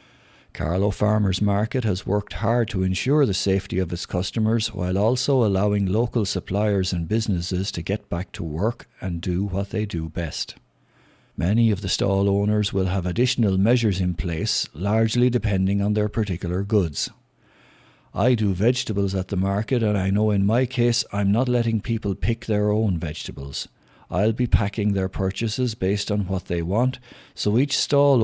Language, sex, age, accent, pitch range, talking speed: English, male, 60-79, Irish, 95-115 Hz, 170 wpm